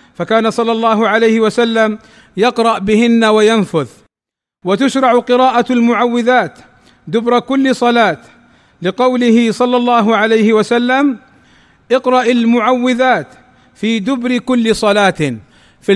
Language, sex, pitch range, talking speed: Arabic, male, 220-245 Hz, 100 wpm